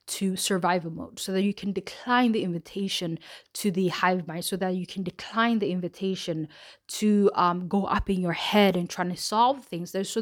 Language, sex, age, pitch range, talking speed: English, female, 20-39, 175-200 Hz, 200 wpm